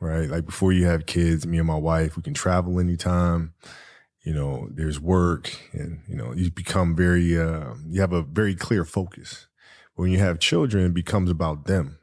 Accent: American